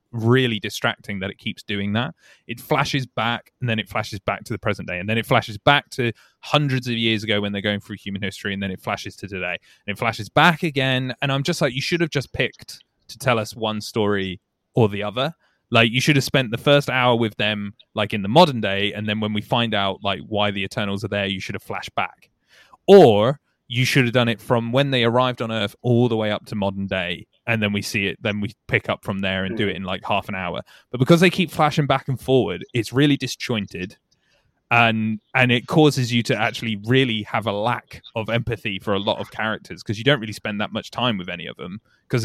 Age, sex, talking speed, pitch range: 20-39, male, 250 wpm, 105-130 Hz